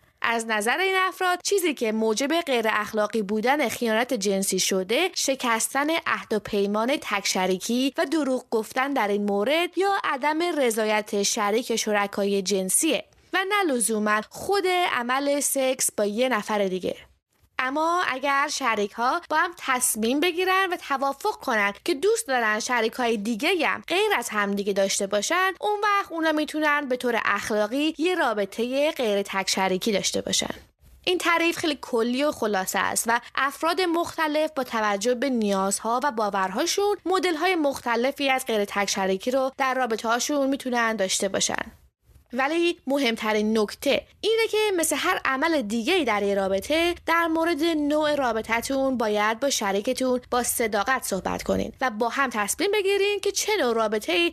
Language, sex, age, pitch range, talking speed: English, female, 20-39, 215-315 Hz, 155 wpm